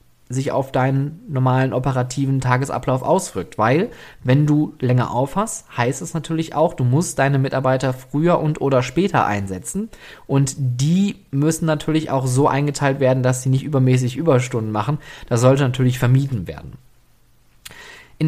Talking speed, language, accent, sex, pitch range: 150 wpm, German, German, male, 130-160 Hz